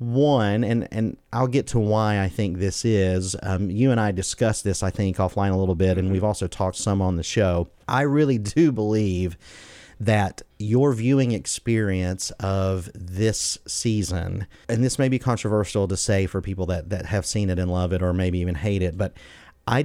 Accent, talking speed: American, 200 wpm